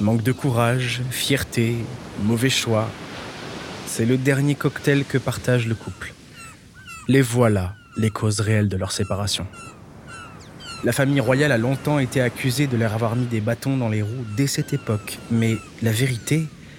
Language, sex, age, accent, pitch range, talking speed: French, male, 20-39, French, 95-130 Hz, 155 wpm